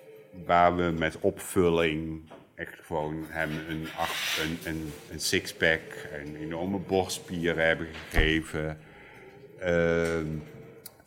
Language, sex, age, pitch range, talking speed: Dutch, male, 50-69, 80-95 Hz, 100 wpm